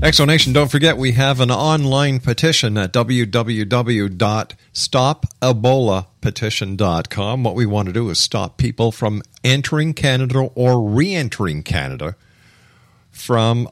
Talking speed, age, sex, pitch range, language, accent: 110 wpm, 50-69, male, 105-135 Hz, English, American